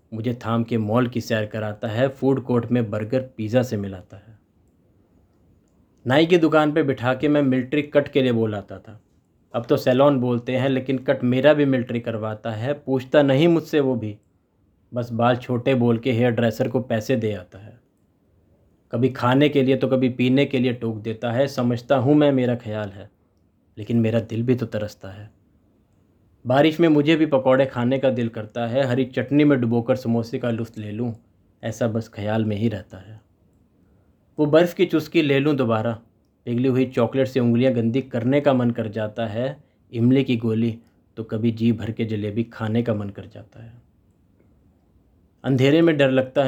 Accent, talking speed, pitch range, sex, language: native, 190 wpm, 105-130 Hz, male, Hindi